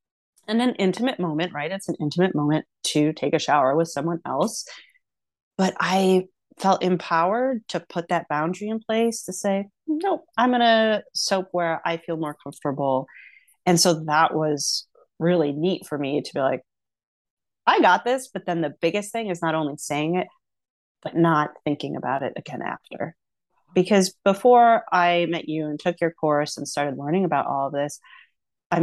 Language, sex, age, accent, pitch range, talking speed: English, female, 30-49, American, 155-205 Hz, 175 wpm